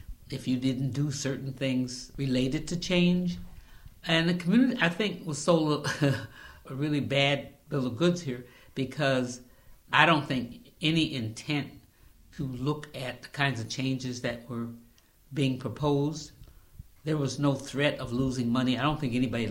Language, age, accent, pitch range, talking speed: English, 60-79, American, 125-150 Hz, 160 wpm